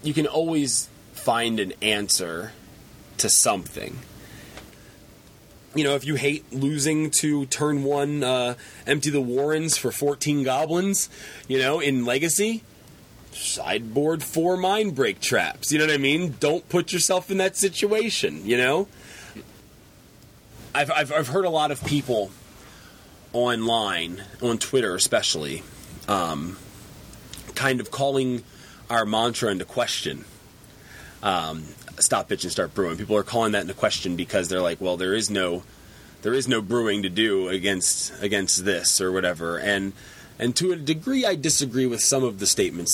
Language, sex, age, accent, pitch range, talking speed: English, male, 30-49, American, 105-150 Hz, 150 wpm